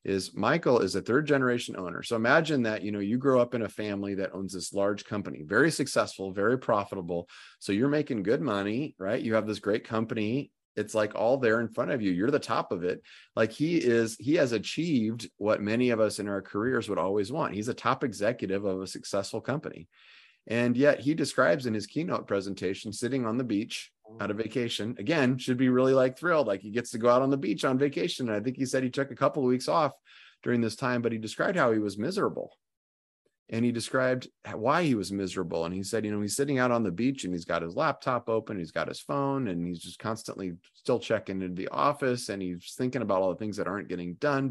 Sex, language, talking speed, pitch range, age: male, English, 240 wpm, 100-125 Hz, 30-49